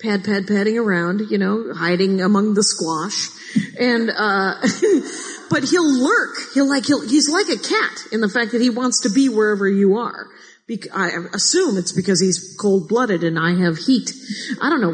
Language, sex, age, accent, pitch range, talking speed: English, female, 40-59, American, 195-280 Hz, 195 wpm